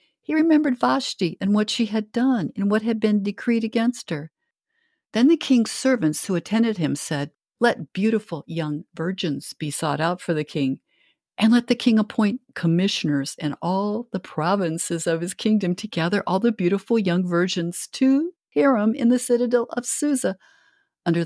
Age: 60-79